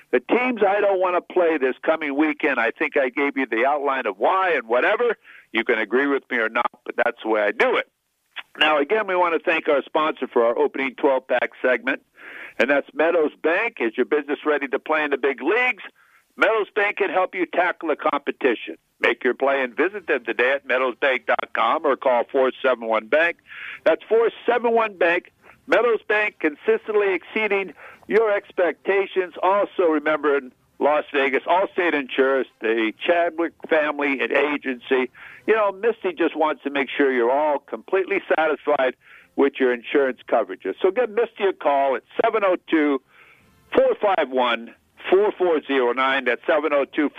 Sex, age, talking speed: male, 60-79, 160 wpm